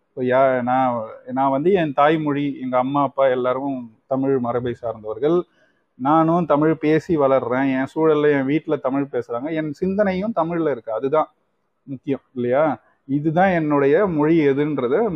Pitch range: 145-185 Hz